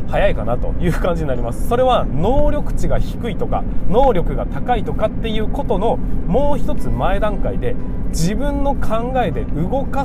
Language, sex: Japanese, male